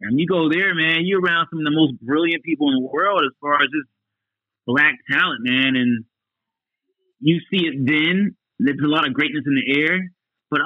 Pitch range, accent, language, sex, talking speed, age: 115-140 Hz, American, English, male, 210 wpm, 30-49